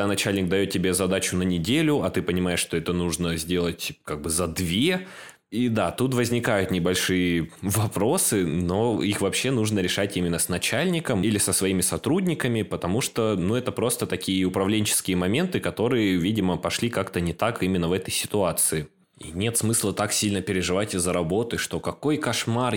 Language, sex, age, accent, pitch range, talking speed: Russian, male, 20-39, native, 95-120 Hz, 170 wpm